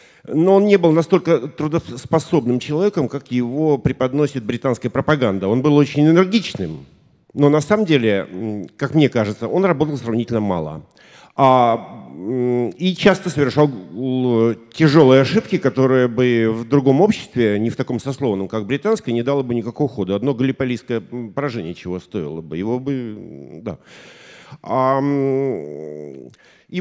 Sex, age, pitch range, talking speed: male, 50-69, 115-155 Hz, 135 wpm